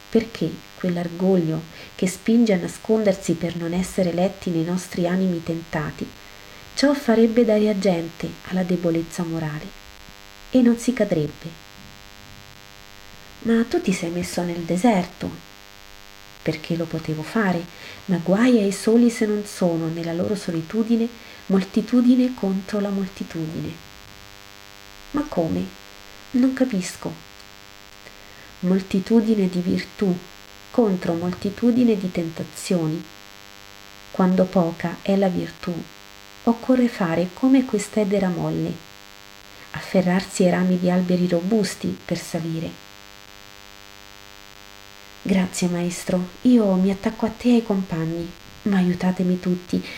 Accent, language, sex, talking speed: native, Italian, female, 110 wpm